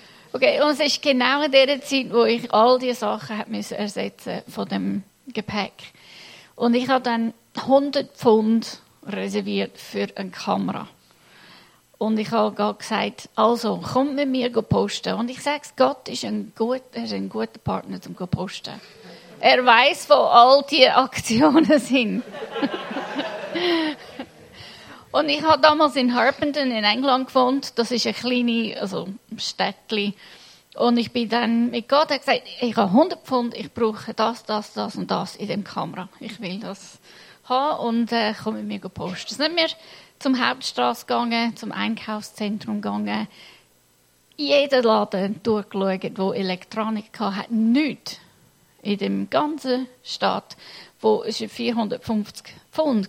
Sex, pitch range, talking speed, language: female, 210-265 Hz, 145 wpm, German